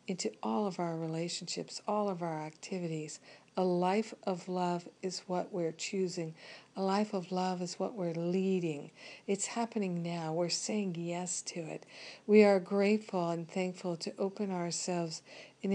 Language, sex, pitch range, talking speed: English, female, 170-195 Hz, 160 wpm